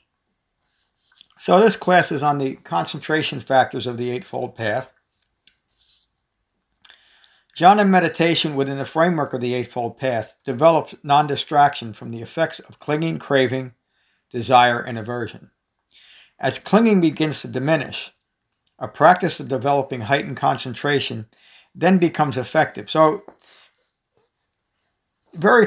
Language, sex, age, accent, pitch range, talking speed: English, male, 60-79, American, 130-155 Hz, 110 wpm